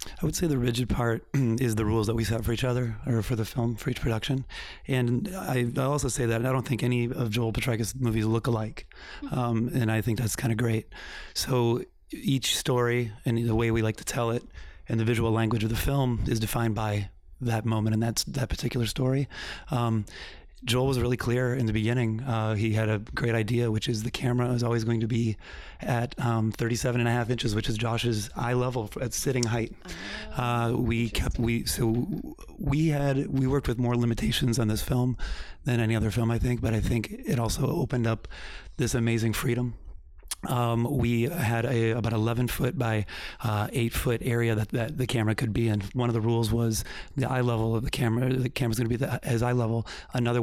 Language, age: English, 30-49